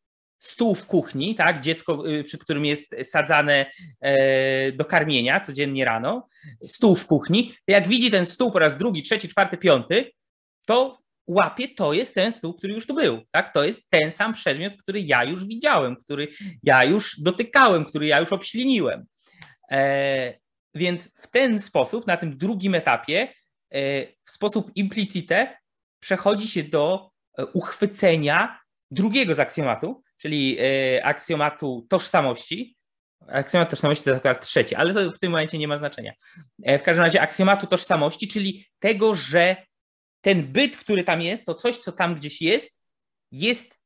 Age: 20-39